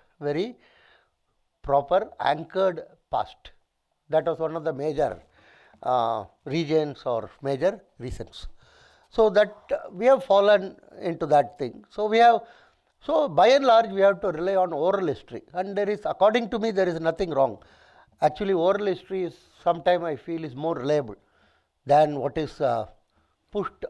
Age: 60-79